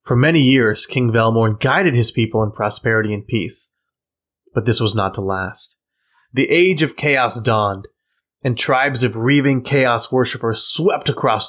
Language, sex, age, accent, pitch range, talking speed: English, male, 30-49, American, 110-130 Hz, 160 wpm